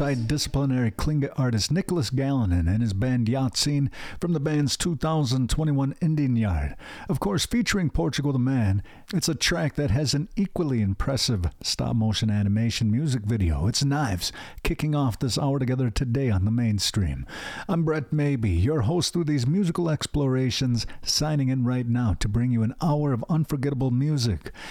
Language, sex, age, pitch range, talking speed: English, male, 50-69, 110-150 Hz, 160 wpm